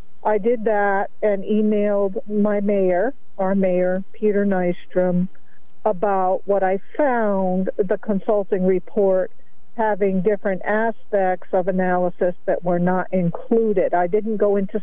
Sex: female